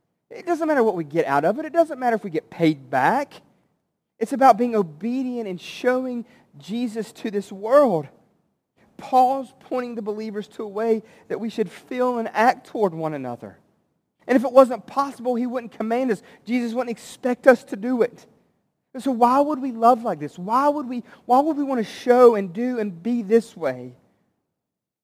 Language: English